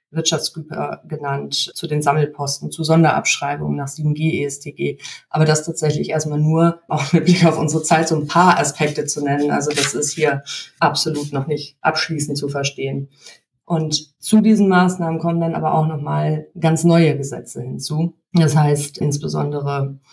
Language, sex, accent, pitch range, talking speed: German, female, German, 140-160 Hz, 155 wpm